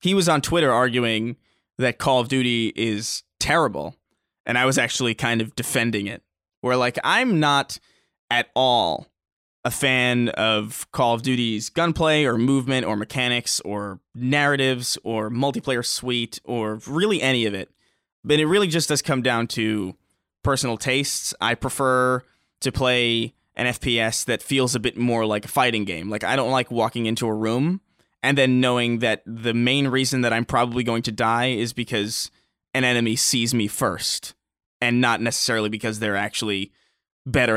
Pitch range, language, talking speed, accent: 110-130 Hz, English, 170 wpm, American